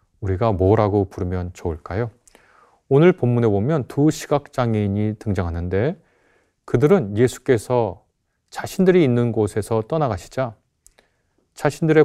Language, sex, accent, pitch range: Korean, male, native, 100-130 Hz